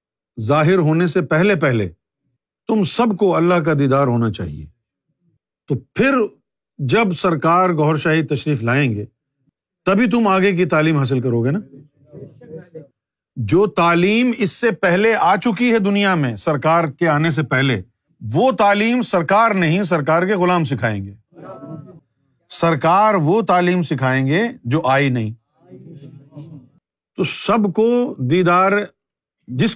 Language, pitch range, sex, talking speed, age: Urdu, 135-185 Hz, male, 135 wpm, 50-69